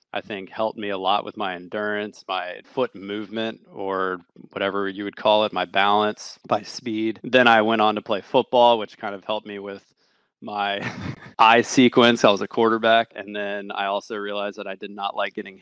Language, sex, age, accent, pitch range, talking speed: English, male, 20-39, American, 100-120 Hz, 205 wpm